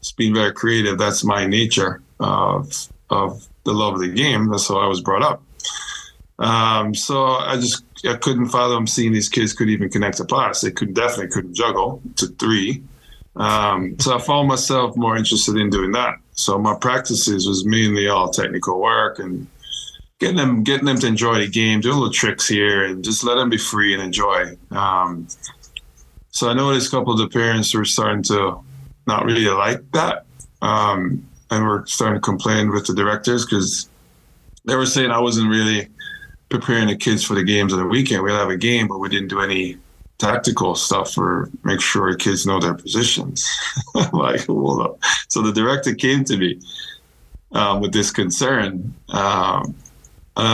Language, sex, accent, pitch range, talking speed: English, male, American, 100-115 Hz, 185 wpm